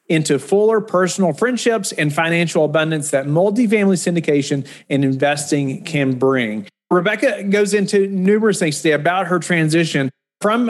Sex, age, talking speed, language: male, 40-59, 135 wpm, English